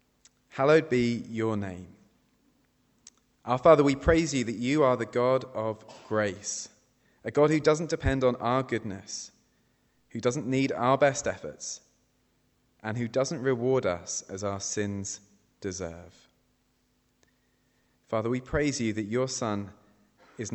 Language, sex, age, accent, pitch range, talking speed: English, male, 30-49, British, 100-125 Hz, 135 wpm